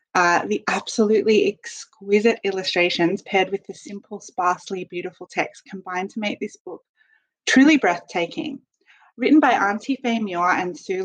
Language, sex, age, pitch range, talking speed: English, female, 20-39, 180-260 Hz, 140 wpm